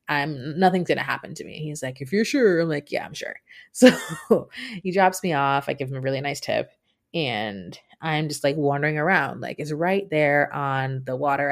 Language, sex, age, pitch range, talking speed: English, female, 20-39, 145-195 Hz, 215 wpm